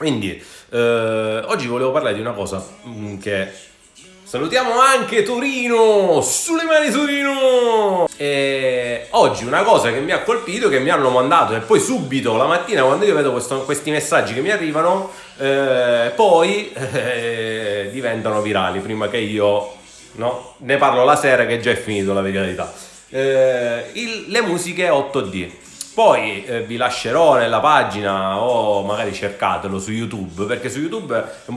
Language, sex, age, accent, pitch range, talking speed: Italian, male, 30-49, native, 105-150 Hz, 150 wpm